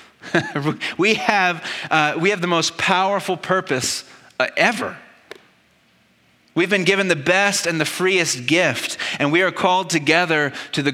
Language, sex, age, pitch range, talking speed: English, male, 30-49, 125-165 Hz, 150 wpm